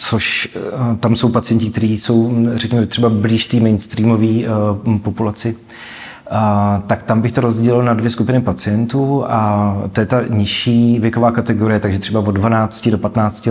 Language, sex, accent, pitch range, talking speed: Czech, male, native, 100-115 Hz, 160 wpm